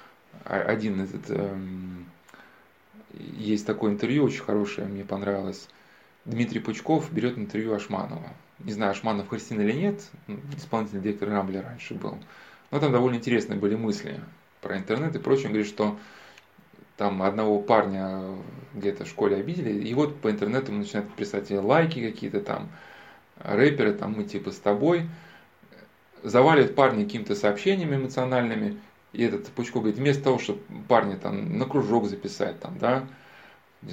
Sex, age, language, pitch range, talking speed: male, 20-39, Russian, 100-130 Hz, 140 wpm